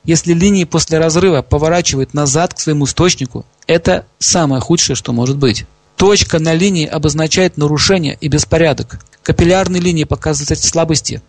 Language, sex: Russian, male